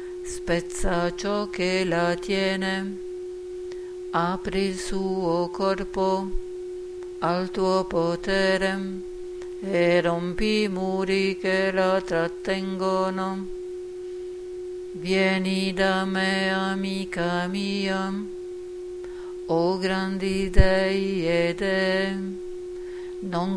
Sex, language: female, Italian